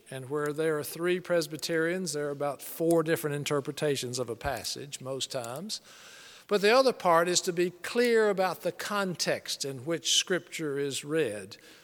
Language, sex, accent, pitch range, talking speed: English, male, American, 145-185 Hz, 165 wpm